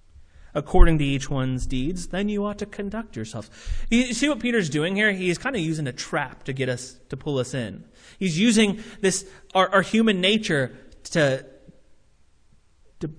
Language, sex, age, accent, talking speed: English, male, 30-49, American, 175 wpm